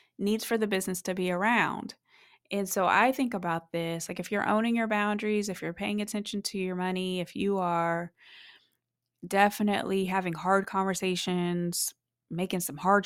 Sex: female